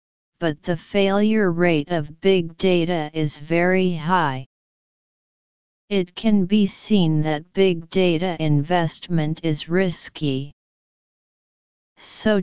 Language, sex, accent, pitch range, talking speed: English, female, American, 155-195 Hz, 100 wpm